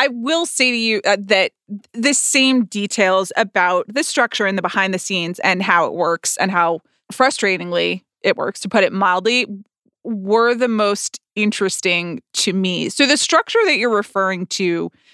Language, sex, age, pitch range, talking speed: English, female, 20-39, 190-235 Hz, 170 wpm